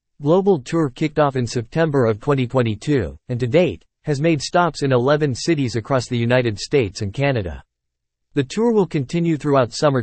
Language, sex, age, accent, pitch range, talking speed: English, male, 40-59, American, 115-150 Hz, 175 wpm